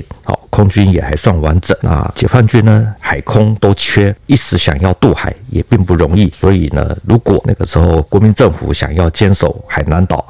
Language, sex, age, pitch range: Chinese, male, 50-69, 80-100 Hz